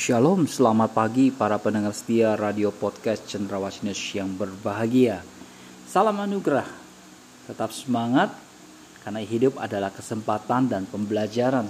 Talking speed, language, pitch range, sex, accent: 115 wpm, Indonesian, 105-155 Hz, male, native